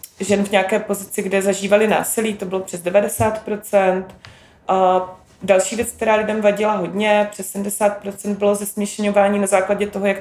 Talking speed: 145 wpm